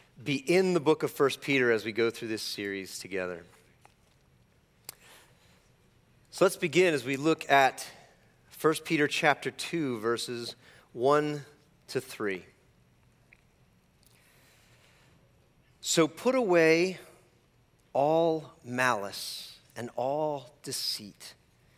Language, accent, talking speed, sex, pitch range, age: English, American, 100 wpm, male, 110-150 Hz, 40-59